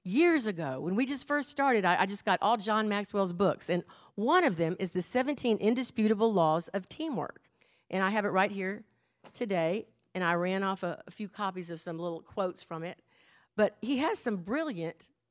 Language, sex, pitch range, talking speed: English, female, 185-245 Hz, 195 wpm